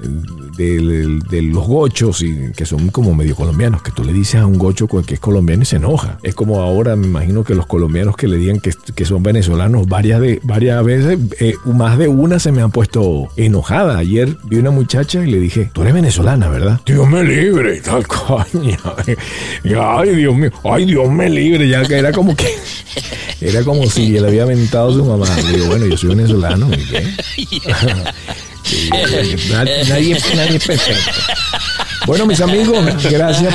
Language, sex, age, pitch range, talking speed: Spanish, male, 50-69, 100-145 Hz, 195 wpm